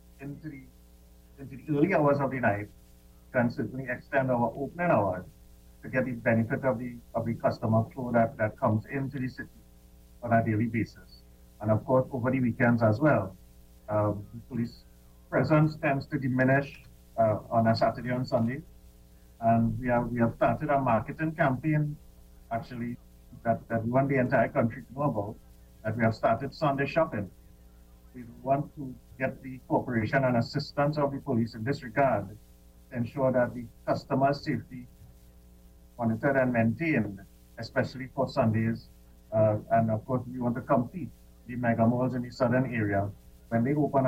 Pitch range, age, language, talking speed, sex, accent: 105-130 Hz, 50-69, English, 170 wpm, male, Indian